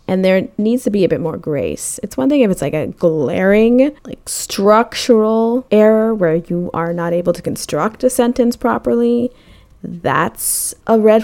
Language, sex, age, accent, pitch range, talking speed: English, female, 20-39, American, 170-210 Hz, 175 wpm